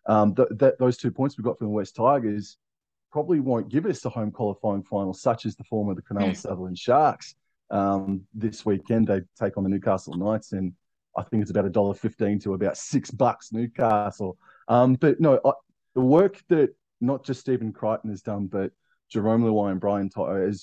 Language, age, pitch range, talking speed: English, 20-39, 100-115 Hz, 205 wpm